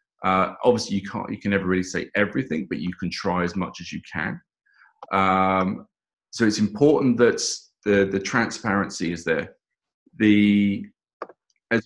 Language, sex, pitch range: English, male, 95-115 Hz